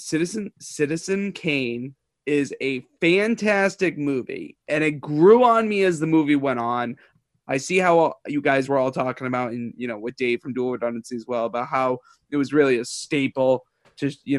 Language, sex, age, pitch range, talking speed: English, male, 20-39, 135-180 Hz, 190 wpm